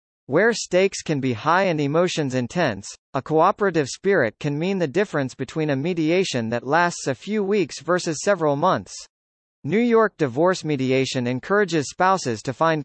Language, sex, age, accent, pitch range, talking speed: English, male, 40-59, American, 135-190 Hz, 160 wpm